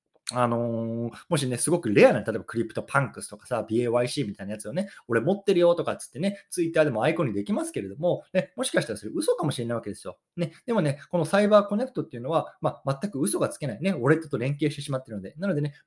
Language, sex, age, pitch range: Japanese, male, 20-39, 115-185 Hz